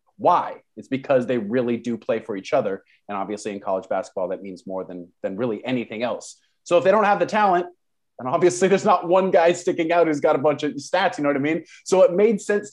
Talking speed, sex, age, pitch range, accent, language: 250 wpm, male, 30-49, 120-170 Hz, American, English